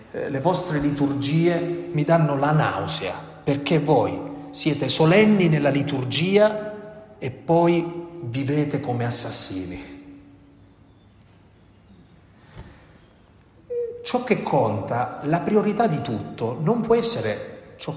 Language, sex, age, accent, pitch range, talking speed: Italian, male, 40-59, native, 105-160 Hz, 95 wpm